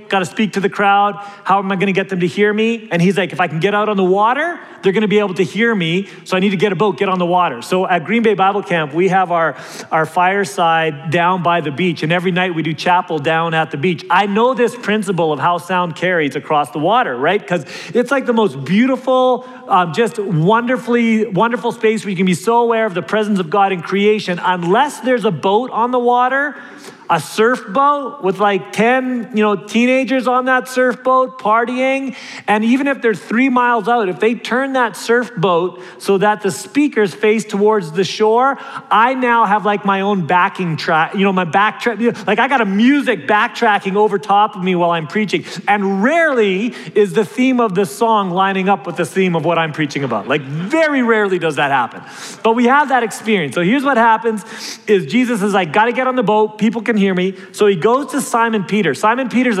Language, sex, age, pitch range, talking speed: English, male, 30-49, 185-235 Hz, 230 wpm